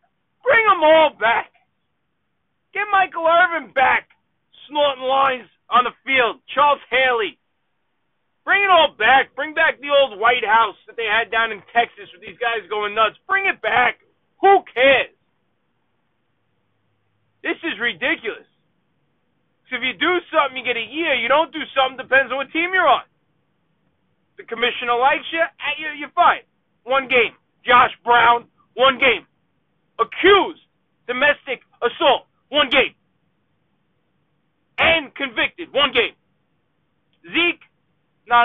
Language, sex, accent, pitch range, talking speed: English, male, American, 215-315 Hz, 135 wpm